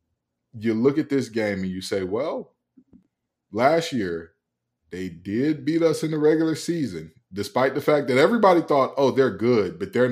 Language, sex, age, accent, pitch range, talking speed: English, male, 20-39, American, 100-135 Hz, 180 wpm